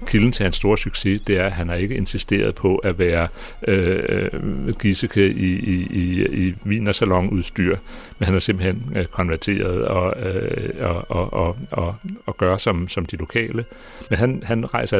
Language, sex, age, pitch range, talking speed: Danish, male, 60-79, 90-105 Hz, 180 wpm